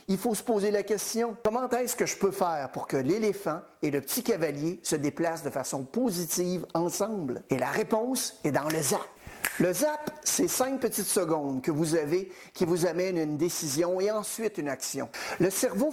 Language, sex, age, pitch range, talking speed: French, male, 50-69, 160-205 Hz, 195 wpm